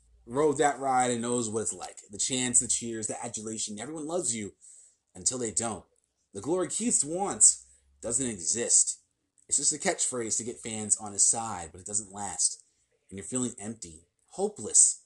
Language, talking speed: English, 180 wpm